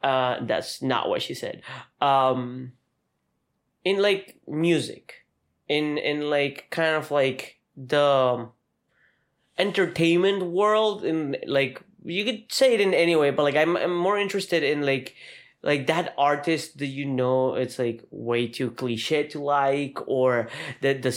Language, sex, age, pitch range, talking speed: English, male, 20-39, 120-145 Hz, 145 wpm